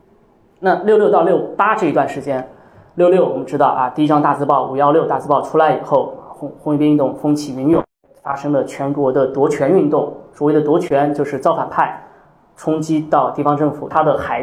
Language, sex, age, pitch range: Chinese, male, 20-39, 140-185 Hz